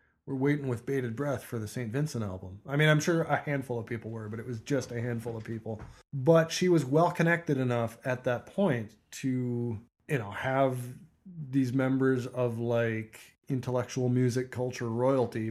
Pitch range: 120-150 Hz